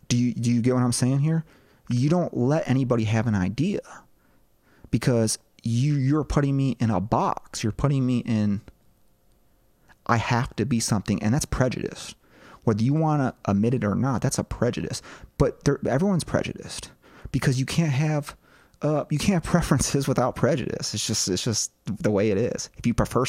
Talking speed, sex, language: 185 wpm, male, English